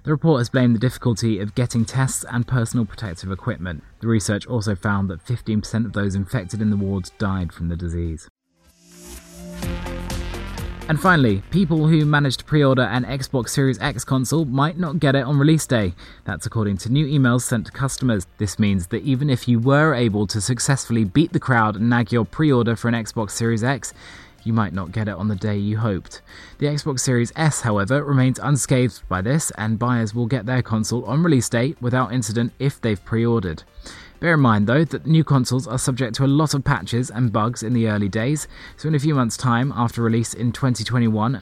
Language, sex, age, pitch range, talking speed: English, male, 20-39, 105-135 Hz, 205 wpm